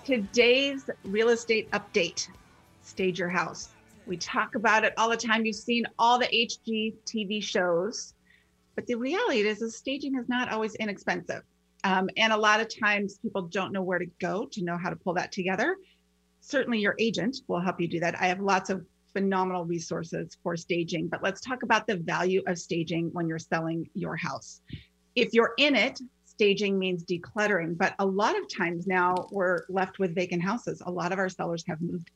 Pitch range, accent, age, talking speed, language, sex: 175-220 Hz, American, 30-49, 190 wpm, English, female